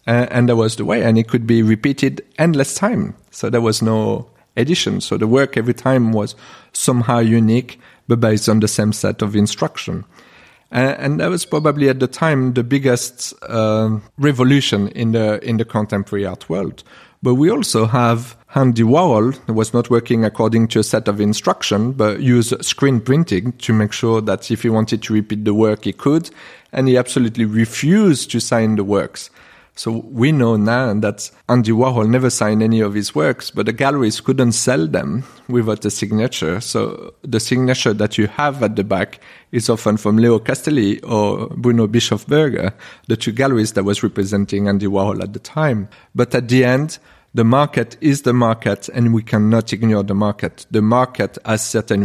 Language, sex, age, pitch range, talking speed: English, male, 40-59, 105-125 Hz, 185 wpm